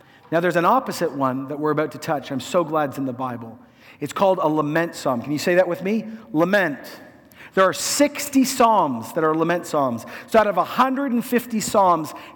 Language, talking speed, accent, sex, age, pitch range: English, 205 wpm, American, male, 50-69, 150-230 Hz